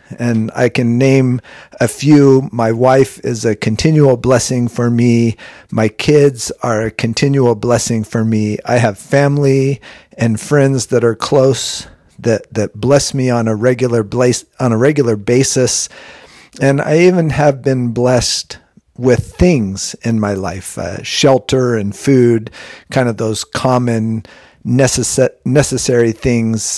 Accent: American